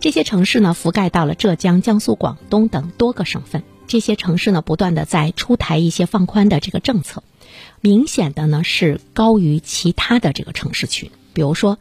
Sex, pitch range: female, 155-210 Hz